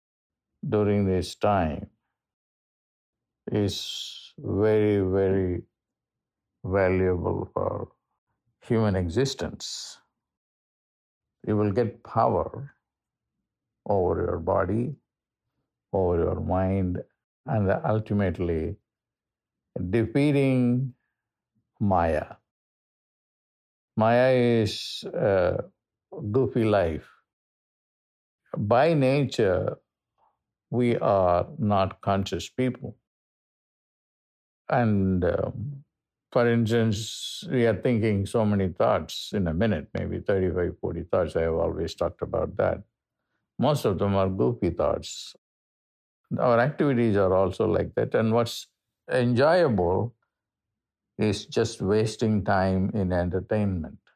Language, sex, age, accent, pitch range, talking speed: English, male, 50-69, Indian, 95-120 Hz, 90 wpm